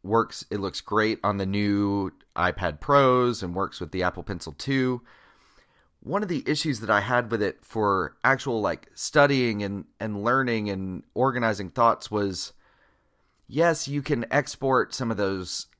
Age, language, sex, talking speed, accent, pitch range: 30-49, English, male, 165 wpm, American, 100-135 Hz